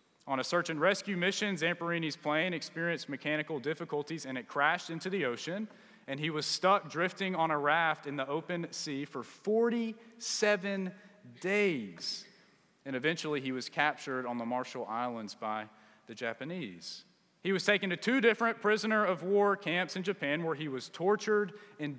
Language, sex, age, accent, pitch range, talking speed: English, male, 30-49, American, 140-200 Hz, 165 wpm